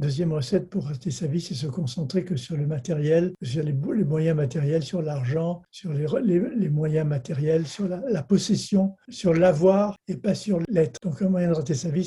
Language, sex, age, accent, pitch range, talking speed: French, male, 60-79, French, 155-195 Hz, 215 wpm